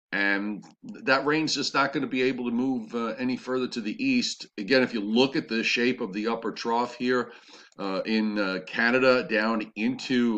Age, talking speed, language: 40-59, 200 wpm, English